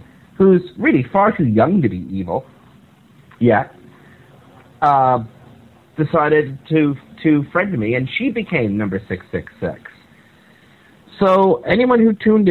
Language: English